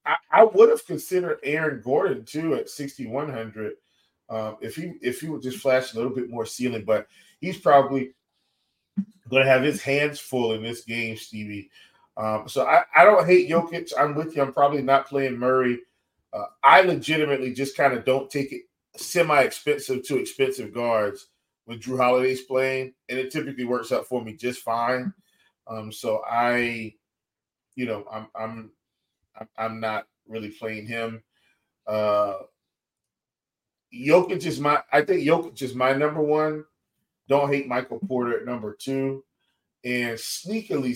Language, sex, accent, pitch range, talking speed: English, male, American, 115-145 Hz, 160 wpm